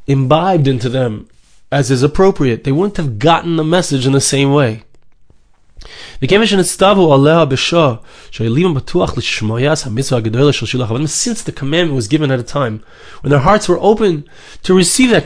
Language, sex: English, male